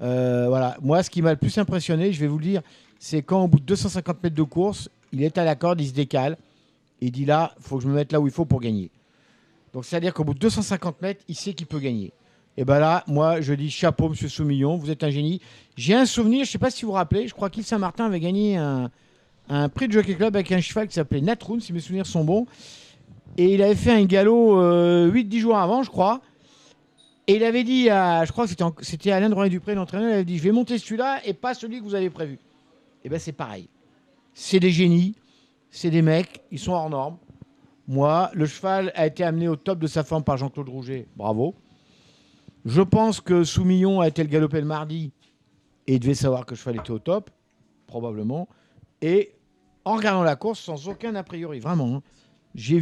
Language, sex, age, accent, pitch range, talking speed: French, male, 50-69, French, 145-195 Hz, 235 wpm